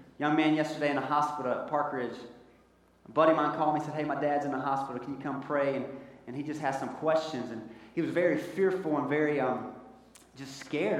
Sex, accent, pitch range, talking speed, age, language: male, American, 135-170 Hz, 235 wpm, 30-49, English